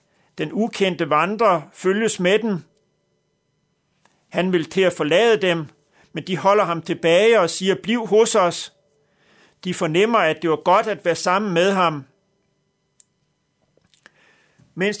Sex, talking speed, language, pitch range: male, 135 wpm, Danish, 175-225 Hz